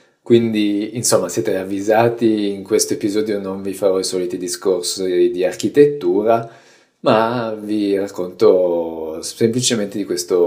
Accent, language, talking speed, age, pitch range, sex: native, Italian, 120 wpm, 20-39, 90-120 Hz, male